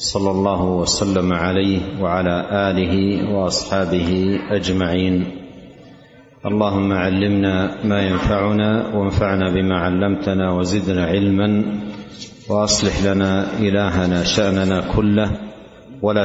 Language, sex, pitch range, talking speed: Arabic, male, 95-110 Hz, 85 wpm